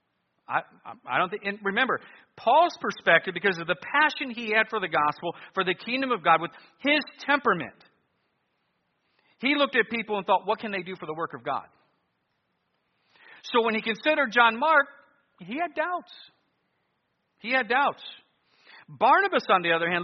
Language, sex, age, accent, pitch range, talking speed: English, male, 50-69, American, 175-260 Hz, 170 wpm